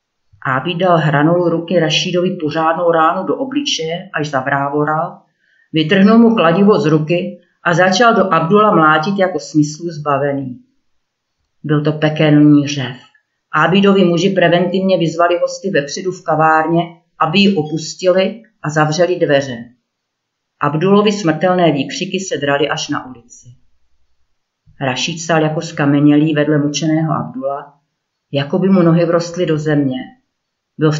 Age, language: 40-59, Czech